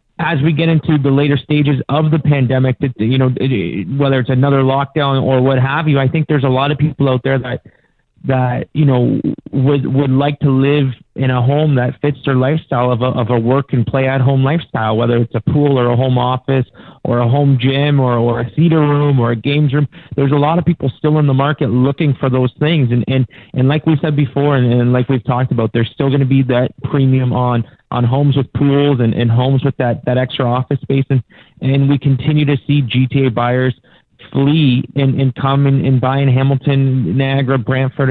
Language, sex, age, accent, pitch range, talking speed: English, male, 30-49, American, 125-145 Hz, 225 wpm